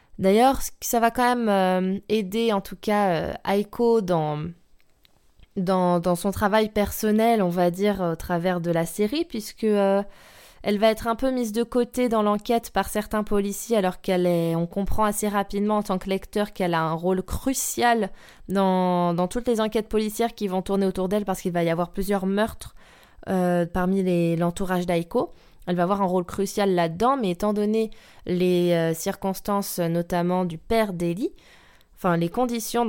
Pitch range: 180-225 Hz